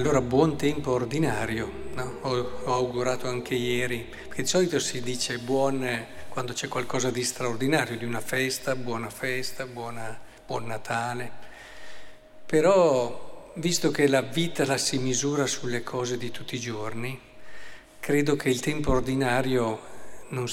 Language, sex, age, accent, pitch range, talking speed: Italian, male, 50-69, native, 125-155 Hz, 145 wpm